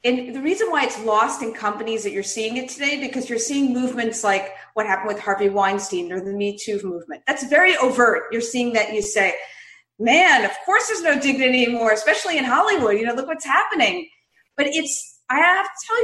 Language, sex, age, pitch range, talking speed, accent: English, female, 40-59, 220-320 Hz, 215 wpm, American